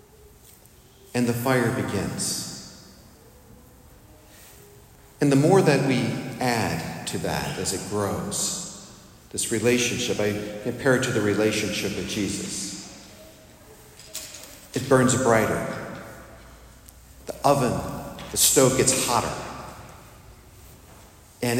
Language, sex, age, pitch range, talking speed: English, male, 50-69, 120-155 Hz, 95 wpm